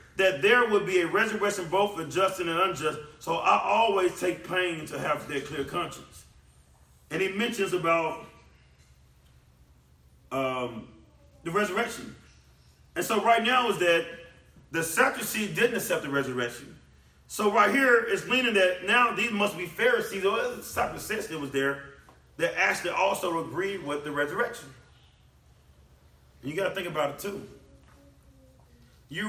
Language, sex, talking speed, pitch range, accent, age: English, male, 150 wpm, 145-230 Hz, American, 40-59